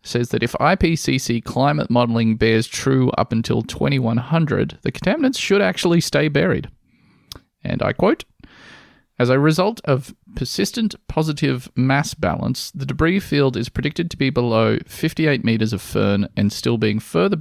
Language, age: English, 30-49